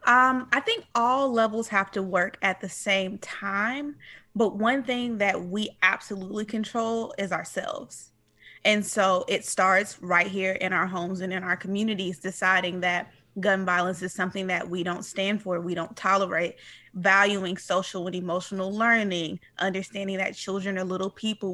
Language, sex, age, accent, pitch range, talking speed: English, female, 20-39, American, 185-220 Hz, 165 wpm